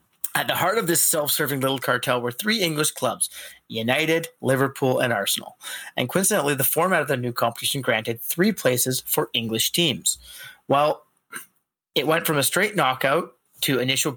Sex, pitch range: male, 125-155 Hz